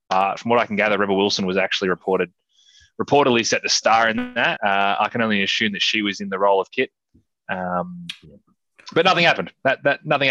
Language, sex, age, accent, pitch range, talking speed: English, male, 20-39, Australian, 100-125 Hz, 215 wpm